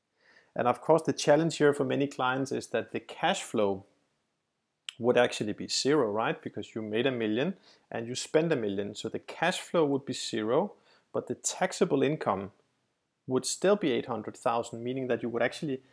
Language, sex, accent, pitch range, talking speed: English, male, Danish, 115-140 Hz, 185 wpm